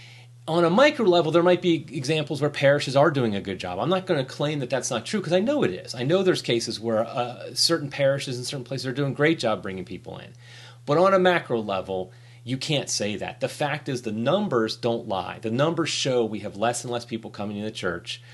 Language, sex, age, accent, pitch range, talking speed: English, male, 30-49, American, 120-155 Hz, 250 wpm